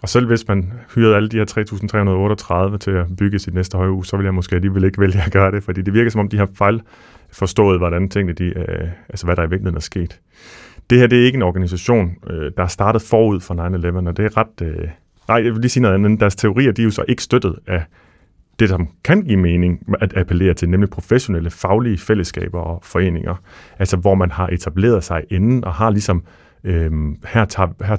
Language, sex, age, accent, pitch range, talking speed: Danish, male, 30-49, native, 90-110 Hz, 235 wpm